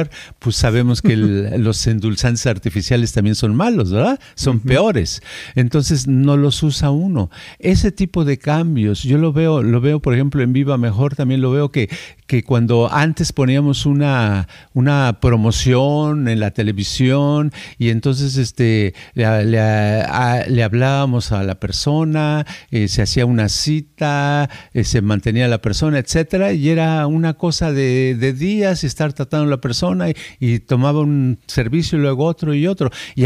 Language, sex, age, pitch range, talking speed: Spanish, male, 50-69, 115-155 Hz, 165 wpm